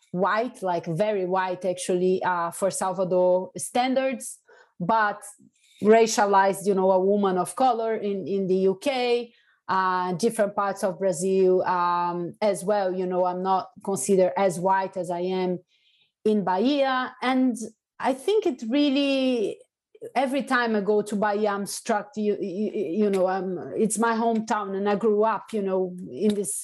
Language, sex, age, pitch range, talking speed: English, female, 30-49, 195-250 Hz, 160 wpm